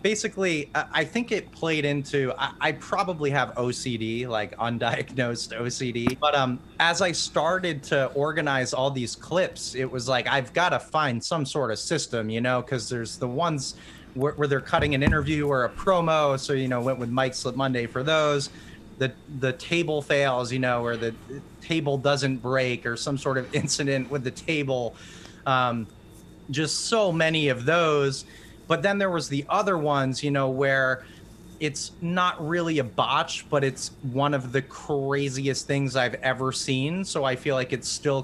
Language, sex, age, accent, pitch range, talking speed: English, male, 30-49, American, 125-150 Hz, 185 wpm